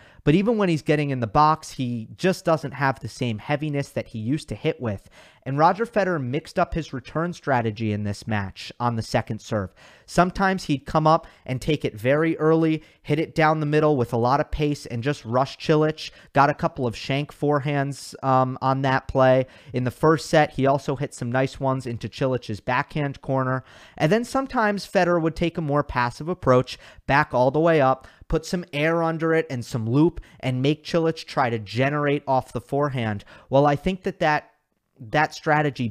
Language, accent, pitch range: English, American, 120-155 Hz